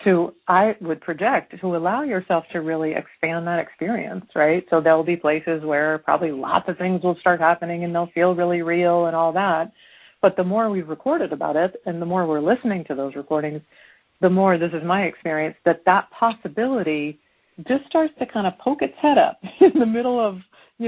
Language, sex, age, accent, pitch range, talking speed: English, female, 40-59, American, 160-210 Hz, 205 wpm